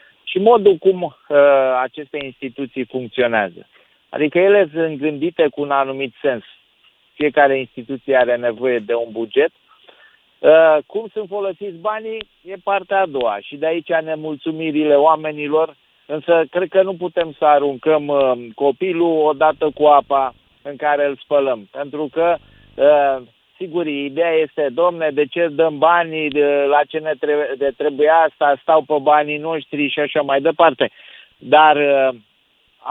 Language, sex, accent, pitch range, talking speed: Romanian, male, native, 135-165 Hz, 140 wpm